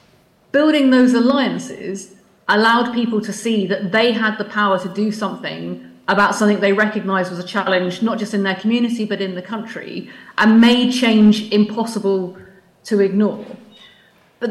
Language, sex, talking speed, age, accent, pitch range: English, female, 155 wpm, 30-49, British, 190-230 Hz